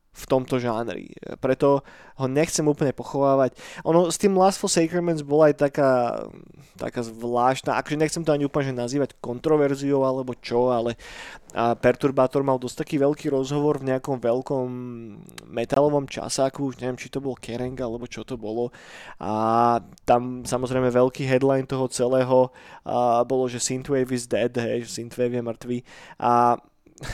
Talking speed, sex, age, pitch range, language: 155 wpm, male, 20-39, 125-150 Hz, Slovak